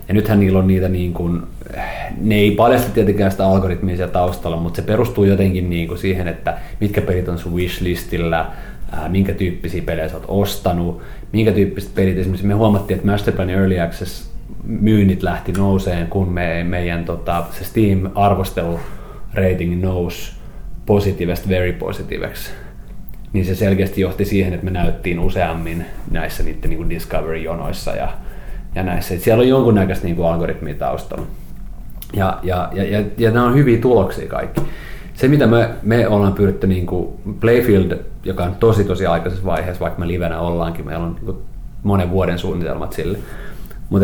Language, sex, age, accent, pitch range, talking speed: Finnish, male, 30-49, native, 85-100 Hz, 150 wpm